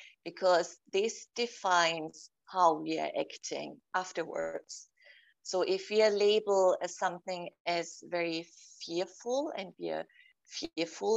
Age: 30-49